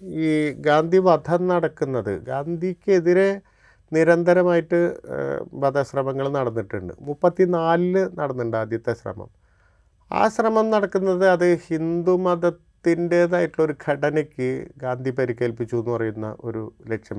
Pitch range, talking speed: 115-170 Hz, 85 wpm